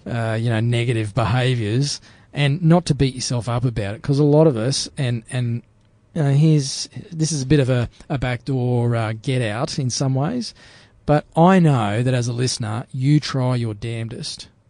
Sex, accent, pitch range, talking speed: male, Australian, 115-145 Hz, 185 wpm